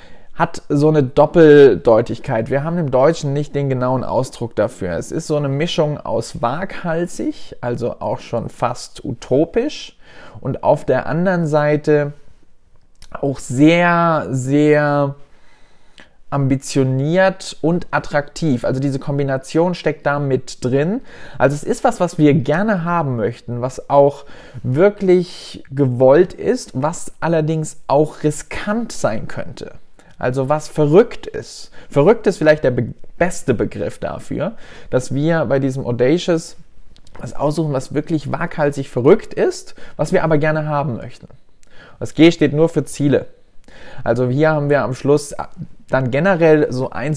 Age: 20-39